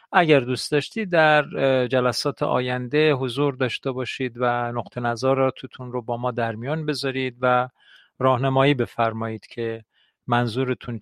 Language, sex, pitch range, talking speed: Persian, male, 120-135 Hz, 130 wpm